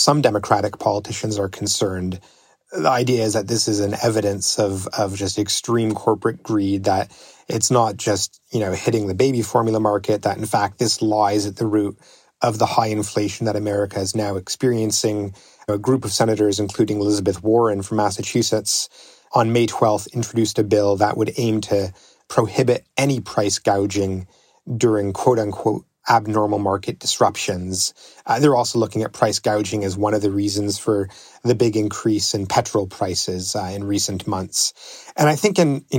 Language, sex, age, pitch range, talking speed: English, male, 30-49, 100-115 Hz, 170 wpm